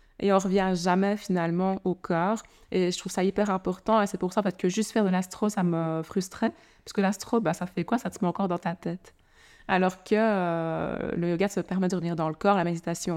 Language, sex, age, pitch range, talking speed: French, female, 20-39, 170-200 Hz, 245 wpm